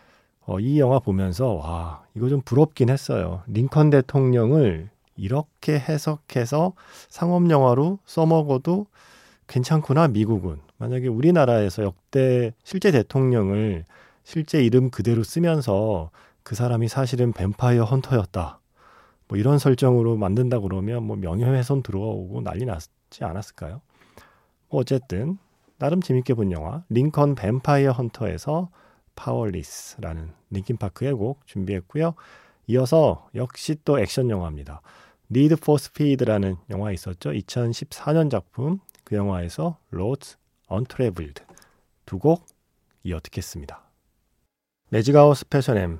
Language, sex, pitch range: Korean, male, 100-140 Hz